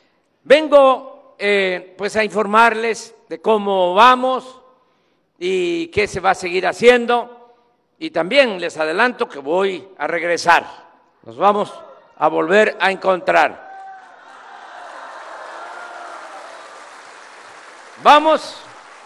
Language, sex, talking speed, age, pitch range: Spanish, male, 95 wpm, 50-69, 180-265 Hz